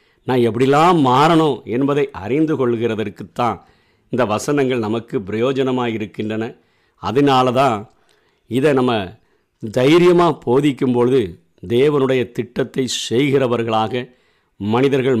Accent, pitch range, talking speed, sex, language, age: native, 115-150 Hz, 85 wpm, male, Tamil, 50-69